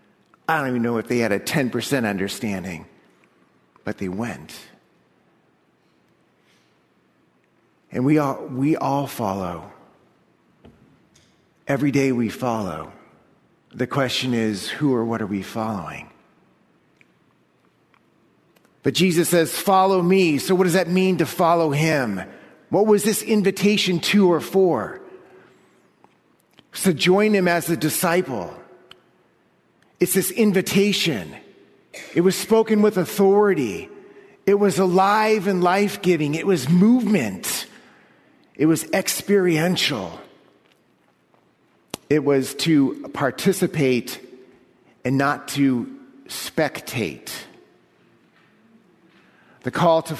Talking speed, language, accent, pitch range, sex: 105 wpm, English, American, 130-190 Hz, male